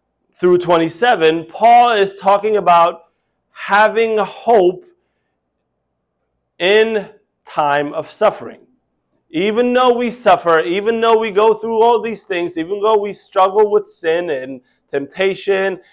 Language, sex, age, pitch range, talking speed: English, male, 30-49, 145-215 Hz, 120 wpm